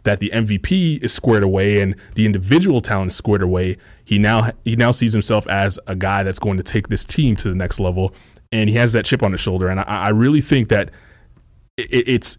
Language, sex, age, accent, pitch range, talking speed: English, male, 30-49, American, 100-130 Hz, 225 wpm